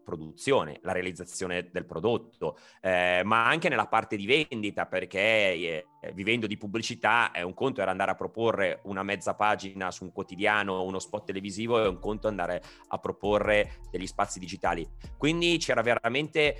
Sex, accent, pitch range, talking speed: male, native, 95-120 Hz, 175 wpm